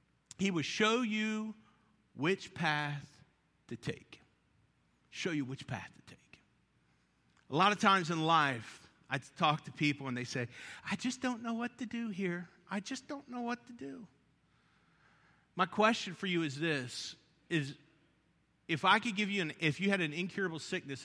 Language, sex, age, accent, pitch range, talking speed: English, male, 50-69, American, 130-185 Hz, 175 wpm